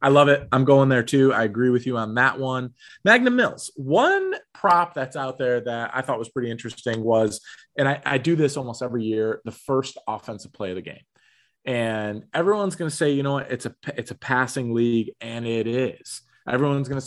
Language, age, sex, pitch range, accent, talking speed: English, 30-49, male, 115-145 Hz, American, 215 wpm